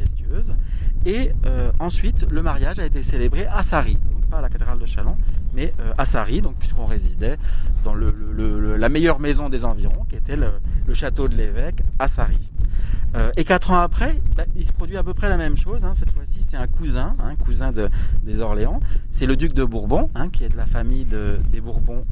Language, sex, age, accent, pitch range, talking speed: French, male, 30-49, French, 80-120 Hz, 220 wpm